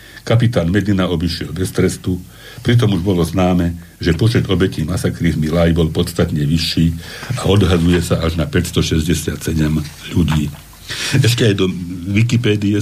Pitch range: 85-105 Hz